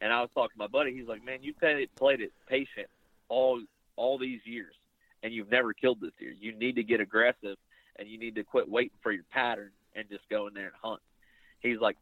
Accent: American